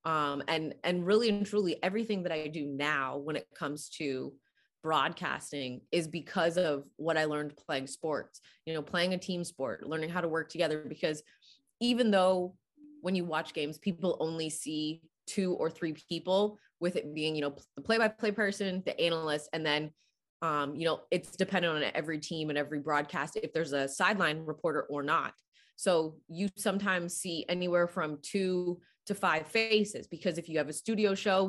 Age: 20-39